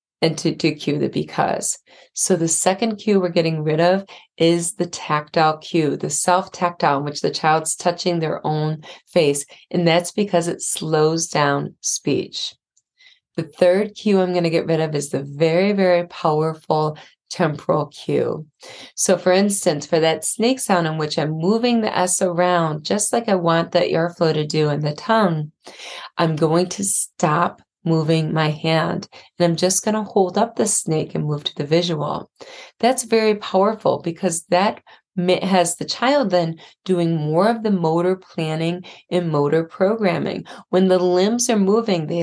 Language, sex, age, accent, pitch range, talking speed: English, female, 30-49, American, 155-185 Hz, 170 wpm